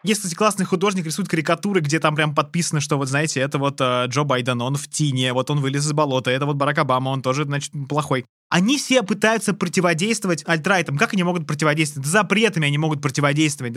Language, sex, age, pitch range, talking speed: Russian, male, 20-39, 165-215 Hz, 205 wpm